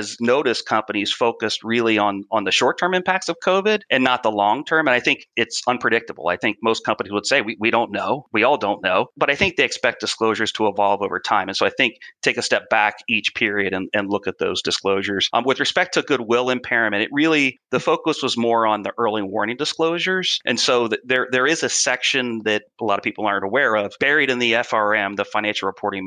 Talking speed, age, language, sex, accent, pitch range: 230 wpm, 30-49, English, male, American, 100-120 Hz